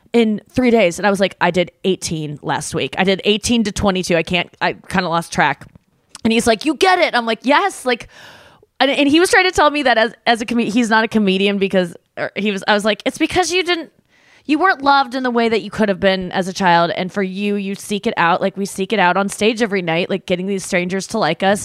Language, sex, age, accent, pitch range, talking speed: English, female, 20-39, American, 190-250 Hz, 275 wpm